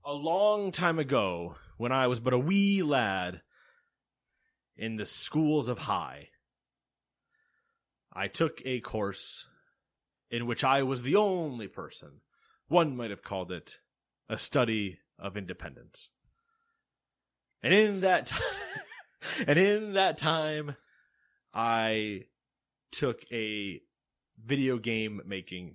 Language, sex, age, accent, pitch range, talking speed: English, male, 30-49, American, 95-140 Hz, 115 wpm